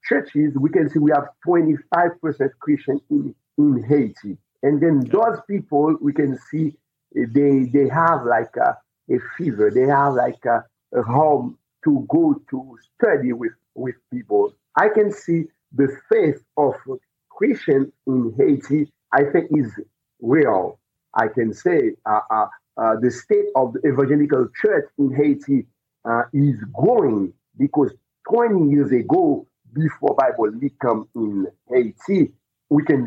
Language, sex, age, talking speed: English, male, 50-69, 145 wpm